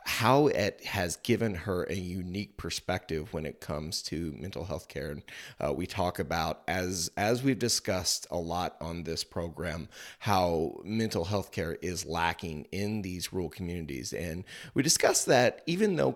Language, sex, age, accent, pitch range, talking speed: English, male, 30-49, American, 85-105 Hz, 165 wpm